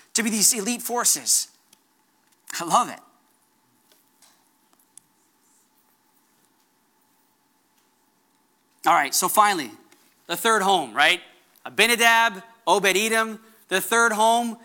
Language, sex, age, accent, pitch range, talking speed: English, male, 30-49, American, 220-290 Hz, 85 wpm